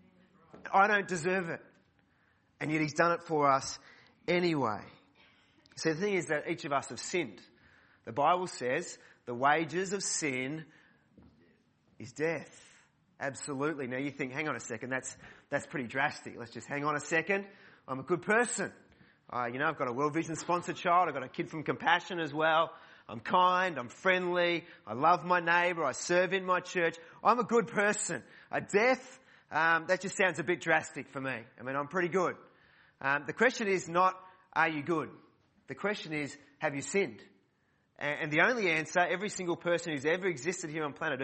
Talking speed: 190 wpm